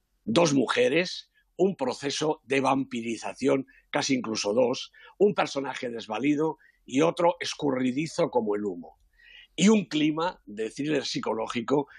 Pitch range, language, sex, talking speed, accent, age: 115-160 Hz, Spanish, male, 115 wpm, Spanish, 50-69